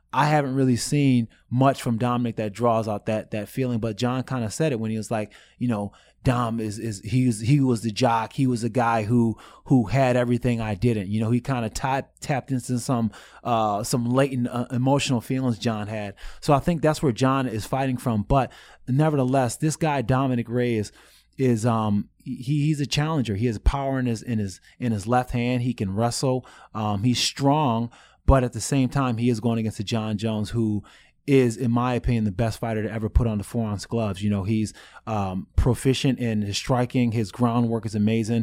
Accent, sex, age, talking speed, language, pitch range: American, male, 20-39, 215 wpm, English, 110-135 Hz